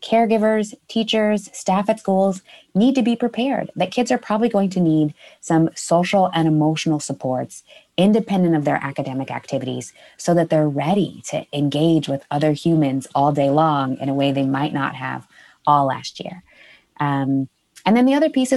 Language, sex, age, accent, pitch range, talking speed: English, female, 20-39, American, 150-200 Hz, 175 wpm